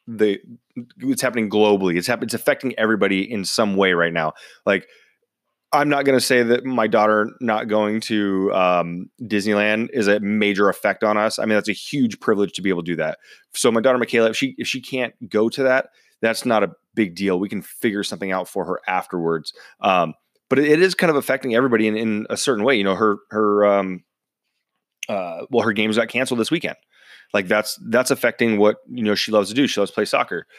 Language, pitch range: English, 105-125 Hz